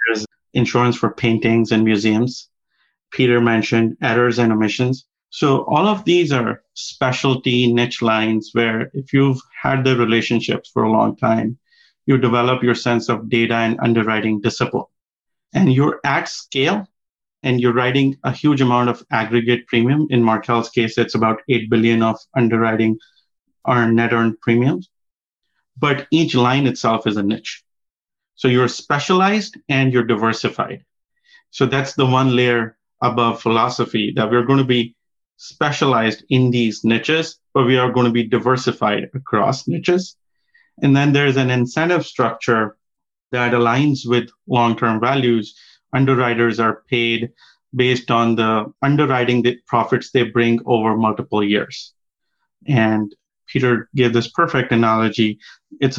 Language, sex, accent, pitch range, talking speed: English, male, Indian, 115-135 Hz, 145 wpm